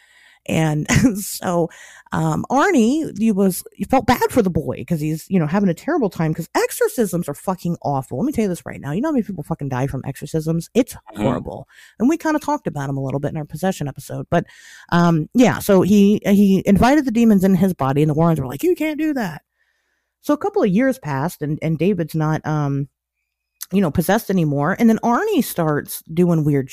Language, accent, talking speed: English, American, 220 wpm